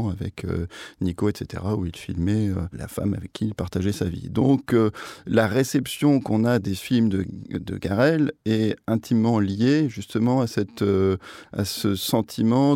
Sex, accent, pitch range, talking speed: male, French, 95-115 Hz, 165 wpm